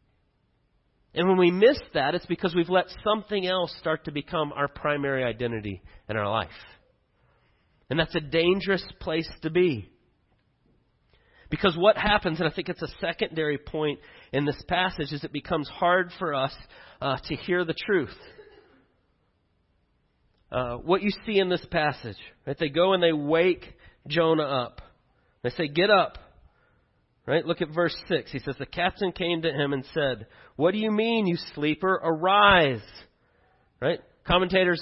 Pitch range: 150-190 Hz